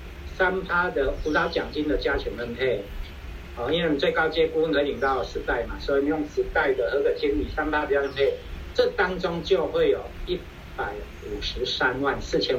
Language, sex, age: Chinese, male, 50-69